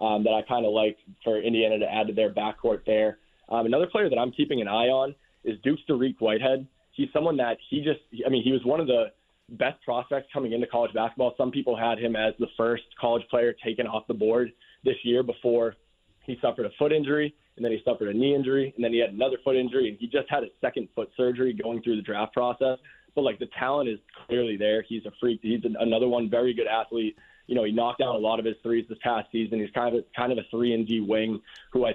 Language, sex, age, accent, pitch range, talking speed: English, male, 20-39, American, 110-125 Hz, 250 wpm